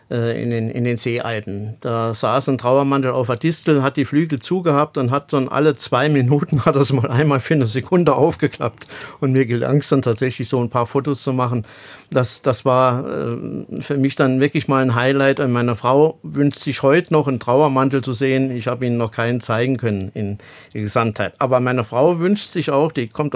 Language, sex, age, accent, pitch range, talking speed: German, male, 50-69, German, 120-145 Hz, 210 wpm